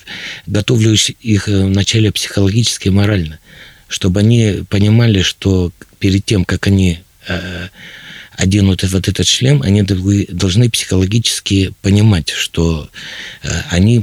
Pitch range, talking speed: 90-110 Hz, 105 wpm